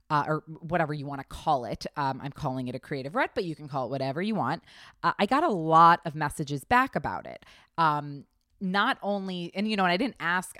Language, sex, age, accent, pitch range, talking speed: English, female, 20-39, American, 150-195 Hz, 245 wpm